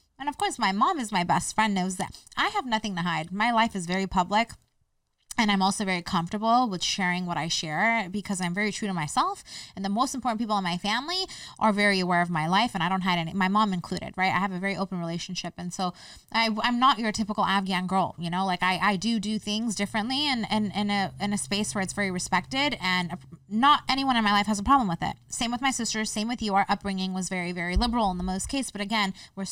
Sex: female